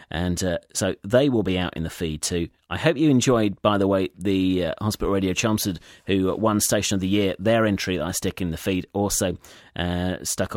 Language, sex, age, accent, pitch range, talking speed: English, male, 30-49, British, 95-125 Hz, 225 wpm